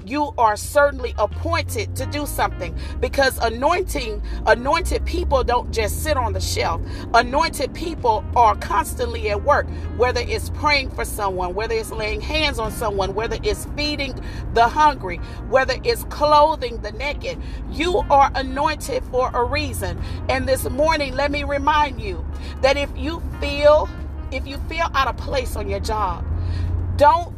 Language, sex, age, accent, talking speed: English, female, 40-59, American, 155 wpm